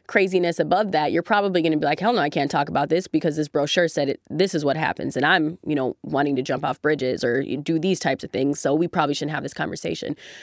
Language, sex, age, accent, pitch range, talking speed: English, female, 20-39, American, 160-215 Hz, 265 wpm